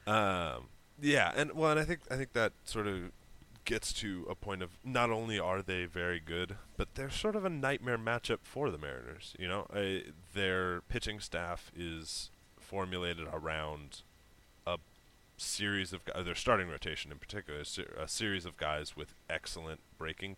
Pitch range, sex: 80-100 Hz, male